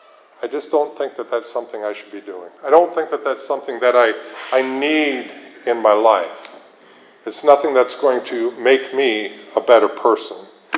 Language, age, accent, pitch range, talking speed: English, 50-69, American, 130-190 Hz, 190 wpm